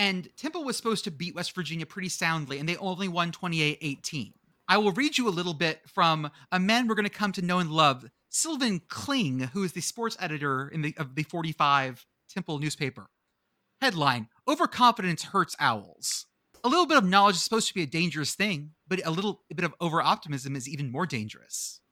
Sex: male